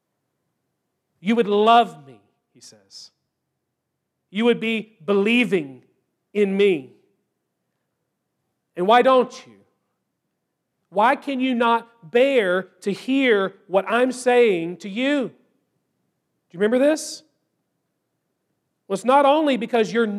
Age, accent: 40-59, American